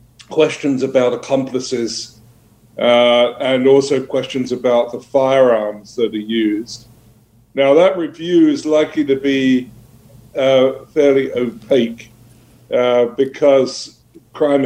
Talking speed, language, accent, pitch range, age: 105 wpm, English, British, 120-135 Hz, 50-69